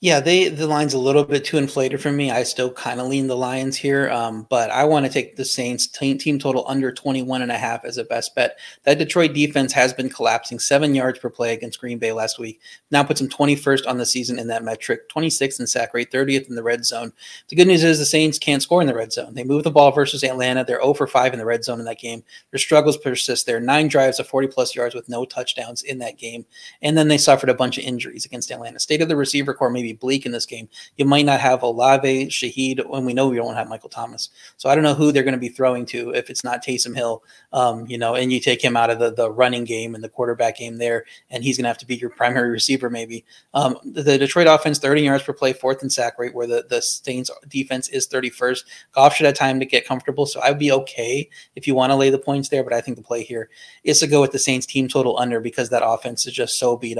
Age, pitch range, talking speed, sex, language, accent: 30-49, 120-140 Hz, 270 wpm, male, English, American